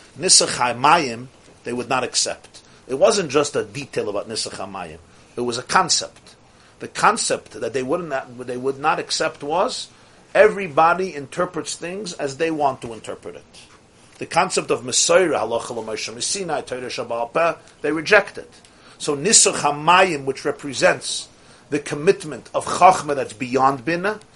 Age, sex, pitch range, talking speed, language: 50-69, male, 135-185 Hz, 135 wpm, English